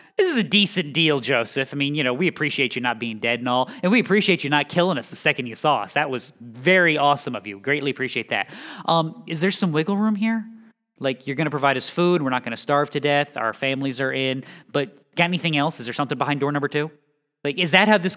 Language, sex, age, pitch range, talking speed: English, male, 20-39, 135-185 Hz, 265 wpm